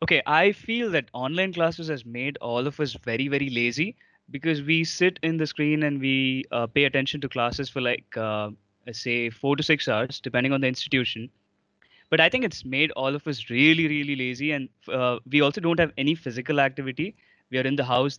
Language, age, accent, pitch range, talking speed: English, 20-39, Indian, 125-150 Hz, 210 wpm